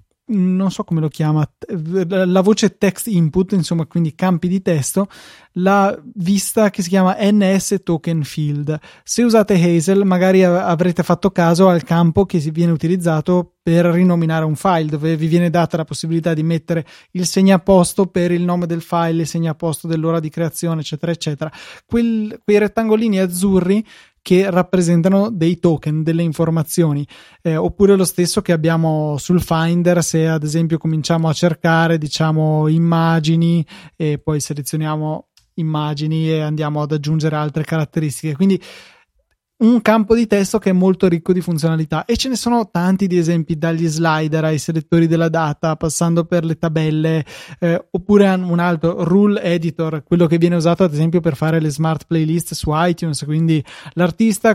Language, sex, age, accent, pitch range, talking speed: Italian, male, 20-39, native, 160-190 Hz, 160 wpm